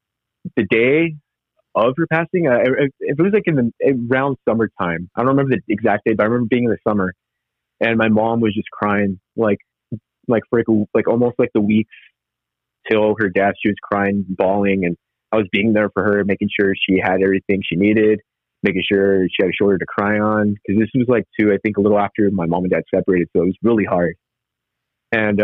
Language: English